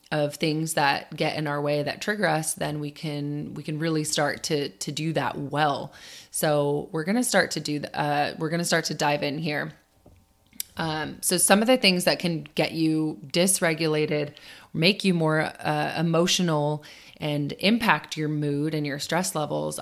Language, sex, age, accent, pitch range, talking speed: English, female, 30-49, American, 150-175 Hz, 190 wpm